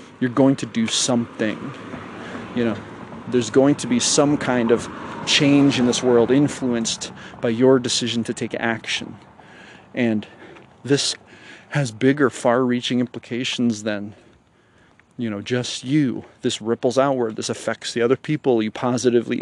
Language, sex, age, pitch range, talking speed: English, male, 30-49, 115-130 Hz, 140 wpm